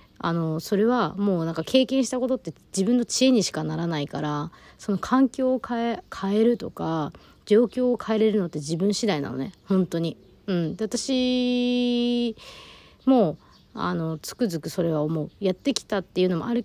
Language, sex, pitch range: Japanese, female, 160-215 Hz